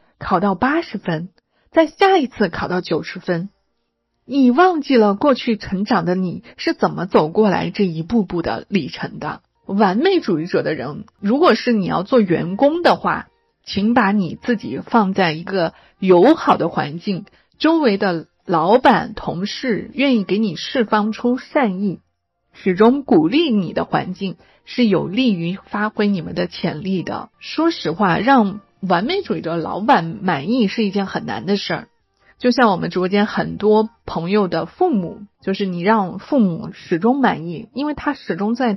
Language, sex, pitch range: Chinese, female, 185-245 Hz